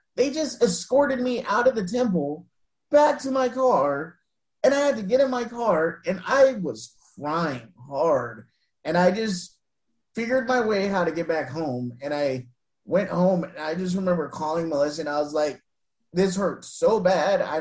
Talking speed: 185 wpm